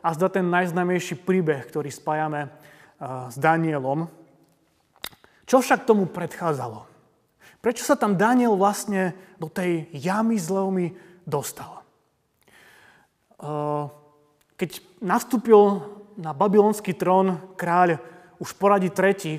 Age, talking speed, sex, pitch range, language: 30-49, 100 wpm, male, 165-205 Hz, Slovak